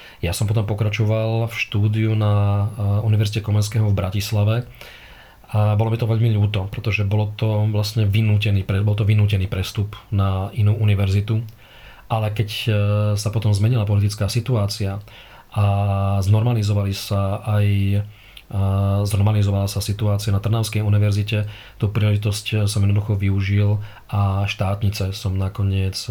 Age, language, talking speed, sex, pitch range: 40-59, Slovak, 130 wpm, male, 100-110 Hz